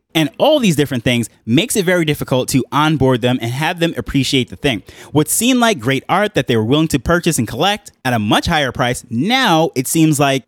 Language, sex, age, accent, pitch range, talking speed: English, male, 20-39, American, 125-160 Hz, 230 wpm